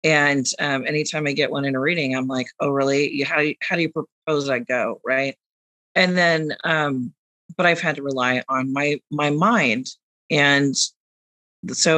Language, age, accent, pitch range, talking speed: English, 40-59, American, 145-190 Hz, 185 wpm